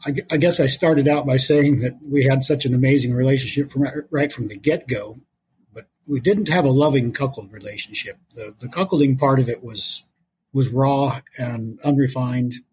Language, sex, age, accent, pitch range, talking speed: English, male, 50-69, American, 120-145 Hz, 185 wpm